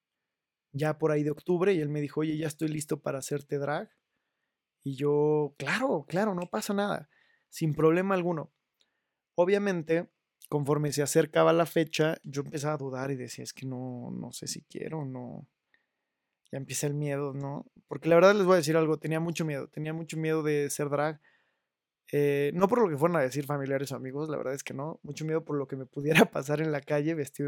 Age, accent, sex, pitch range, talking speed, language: 20-39, Mexican, male, 140-165 Hz, 210 wpm, Spanish